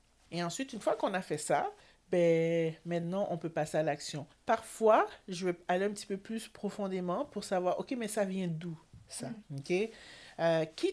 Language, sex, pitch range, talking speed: French, male, 155-200 Hz, 190 wpm